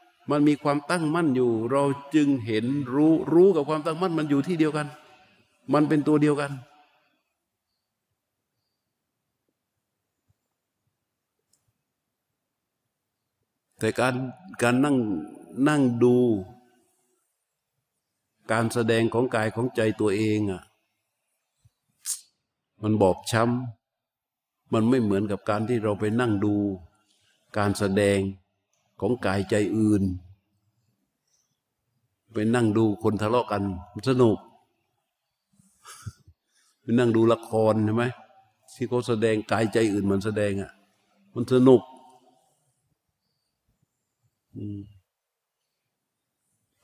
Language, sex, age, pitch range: Thai, male, 60-79, 105-140 Hz